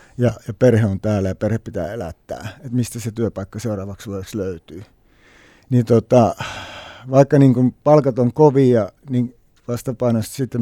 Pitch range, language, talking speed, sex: 110-130 Hz, Finnish, 145 wpm, male